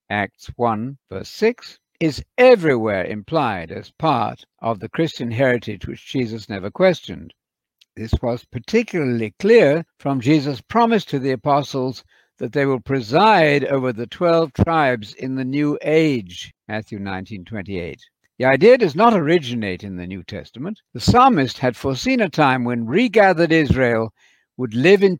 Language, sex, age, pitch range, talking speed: English, male, 60-79, 115-165 Hz, 150 wpm